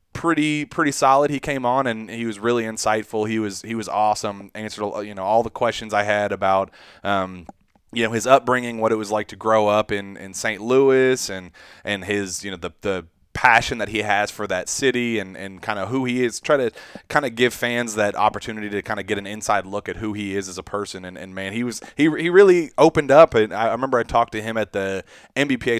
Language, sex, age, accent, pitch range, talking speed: English, male, 30-49, American, 100-120 Hz, 240 wpm